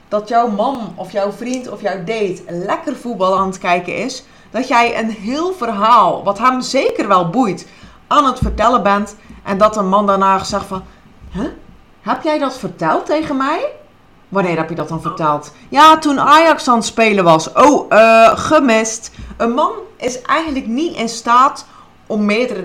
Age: 30-49